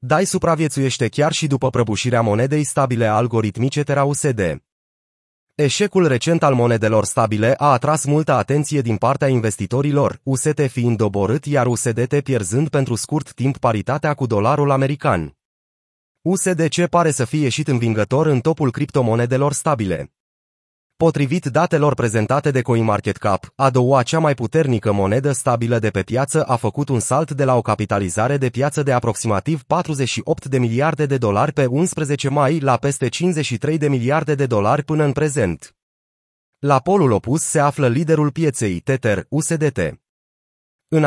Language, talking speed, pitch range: Romanian, 145 wpm, 115-150 Hz